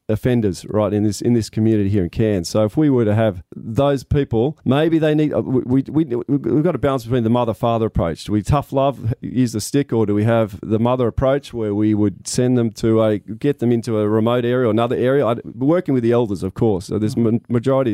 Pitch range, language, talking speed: 105-125 Hz, English, 250 wpm